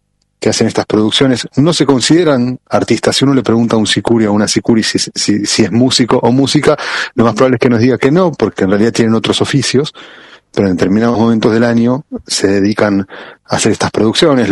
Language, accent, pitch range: Spanish, Argentinian, 110-140 Hz